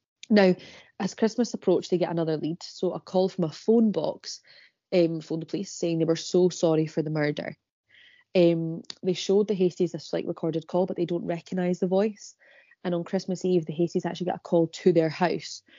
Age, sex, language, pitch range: 20-39, female, English, 160-185 Hz